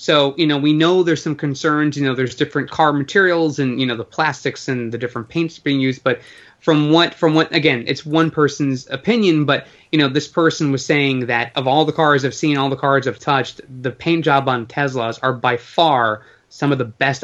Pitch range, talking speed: 130-155 Hz, 230 wpm